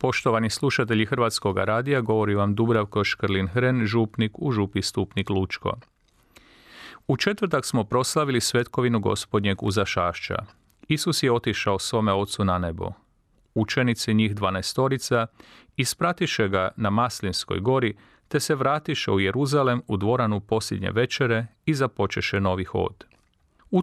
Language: Croatian